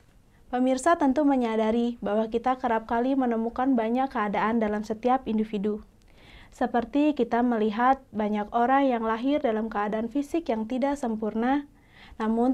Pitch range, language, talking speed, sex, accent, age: 220-255 Hz, Indonesian, 130 wpm, female, native, 20-39